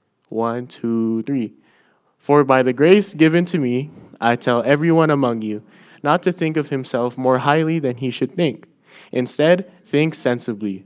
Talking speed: 160 wpm